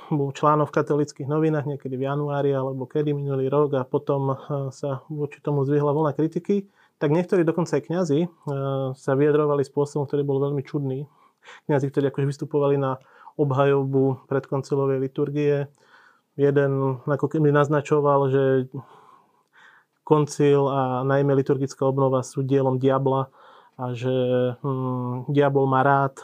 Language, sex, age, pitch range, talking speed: Slovak, male, 30-49, 135-150 Hz, 135 wpm